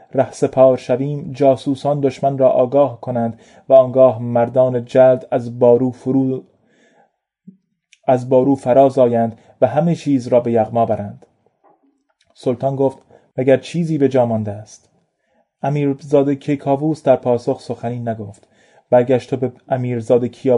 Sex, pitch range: male, 120-135 Hz